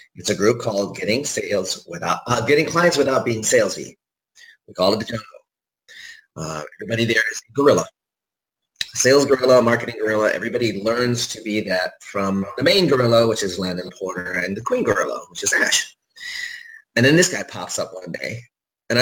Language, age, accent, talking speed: English, 30-49, American, 180 wpm